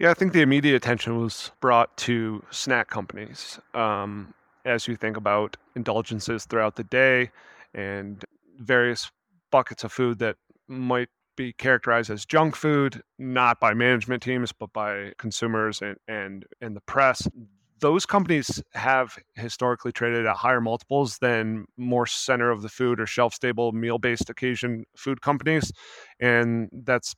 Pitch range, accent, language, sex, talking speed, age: 110-125 Hz, American, English, male, 145 wpm, 30-49